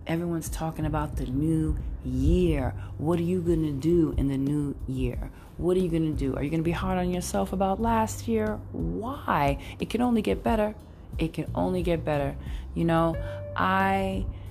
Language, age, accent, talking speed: English, 30-49, American, 195 wpm